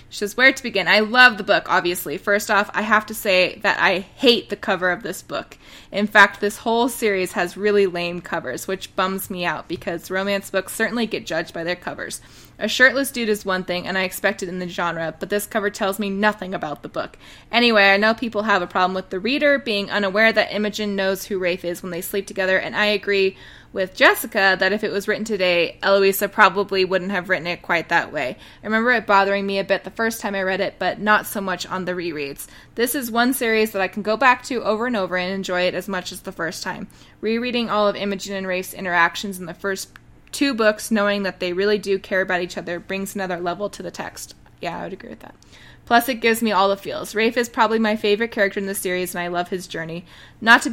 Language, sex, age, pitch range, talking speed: English, female, 20-39, 185-215 Hz, 245 wpm